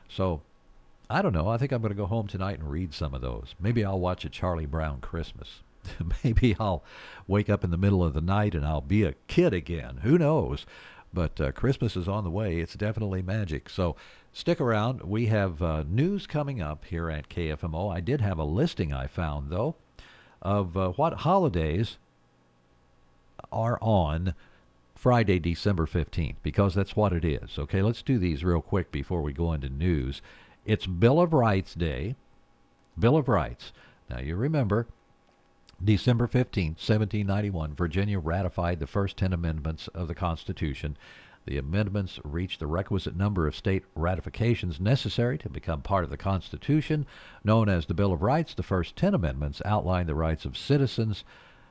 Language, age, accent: English, 60-79, American